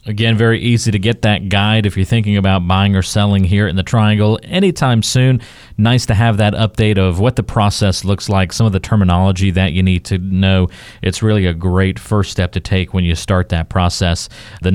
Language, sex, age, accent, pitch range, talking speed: English, male, 40-59, American, 95-120 Hz, 220 wpm